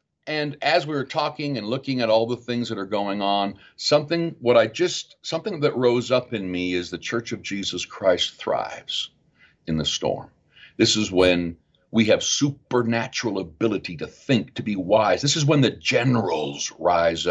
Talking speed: 185 wpm